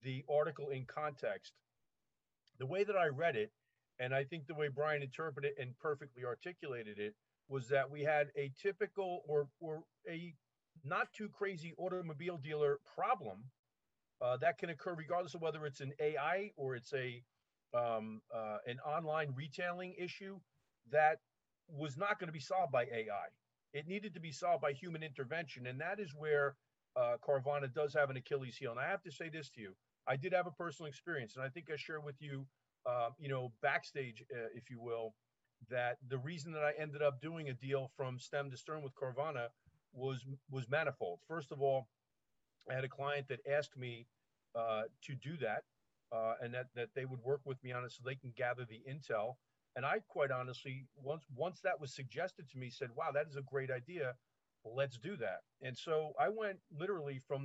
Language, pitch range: English, 130-160 Hz